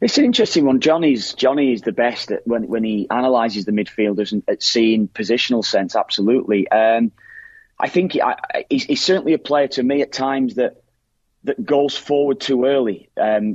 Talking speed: 190 wpm